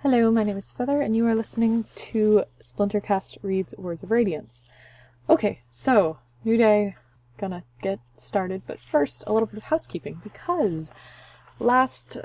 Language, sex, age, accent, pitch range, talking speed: English, female, 20-39, American, 150-210 Hz, 150 wpm